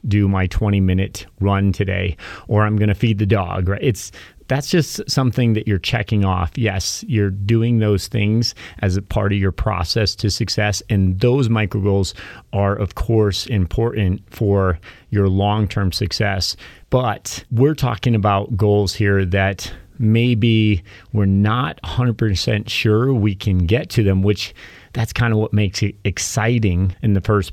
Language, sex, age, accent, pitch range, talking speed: English, male, 30-49, American, 95-110 Hz, 160 wpm